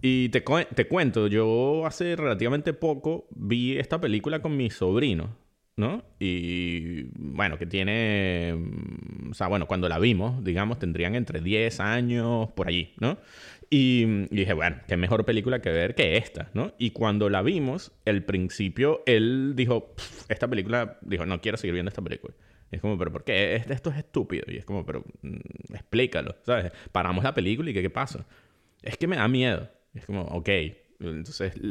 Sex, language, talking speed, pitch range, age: male, Spanish, 180 wpm, 95-130 Hz, 30-49